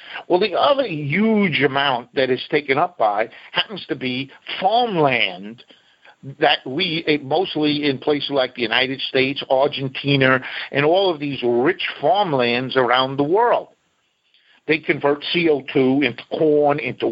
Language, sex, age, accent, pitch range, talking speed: English, male, 50-69, American, 130-160 Hz, 135 wpm